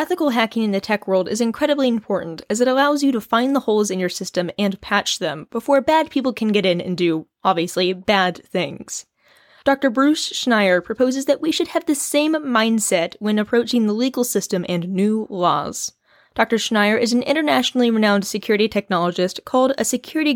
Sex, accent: female, American